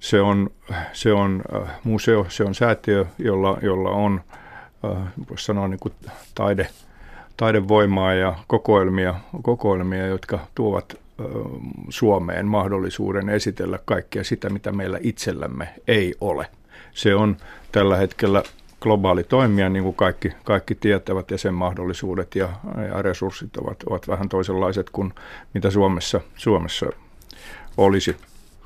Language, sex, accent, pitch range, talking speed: Finnish, male, native, 95-105 Hz, 115 wpm